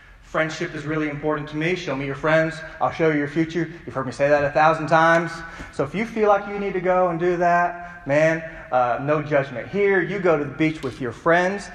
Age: 30-49